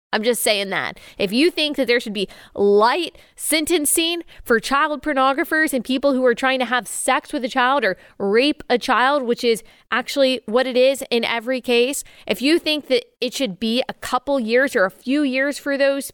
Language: English